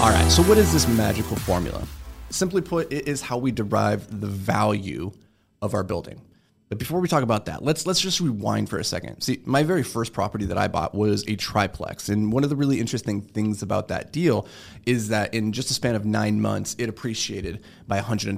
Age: 30-49